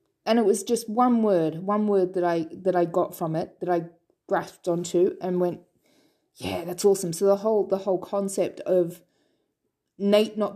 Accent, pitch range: Australian, 175-220 Hz